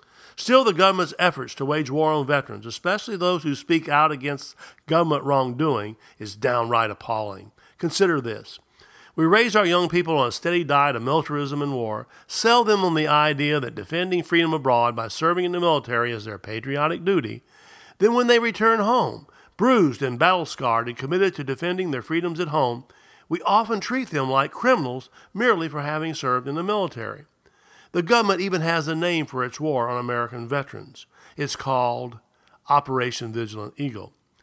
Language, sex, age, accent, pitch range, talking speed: English, male, 50-69, American, 125-175 Hz, 175 wpm